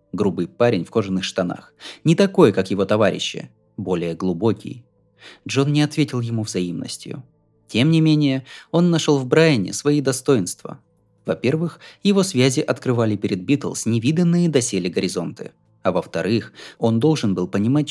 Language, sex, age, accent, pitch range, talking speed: Russian, male, 20-39, native, 100-145 Hz, 135 wpm